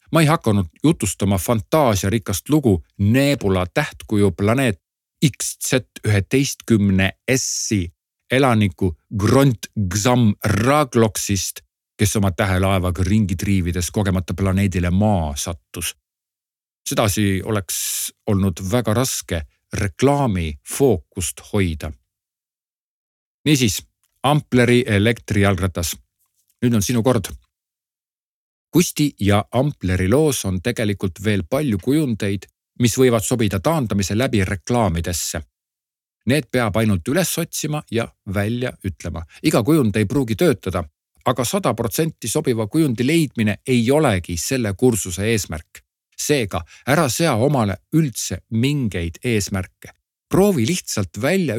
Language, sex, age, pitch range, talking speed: Czech, male, 50-69, 95-130 Hz, 100 wpm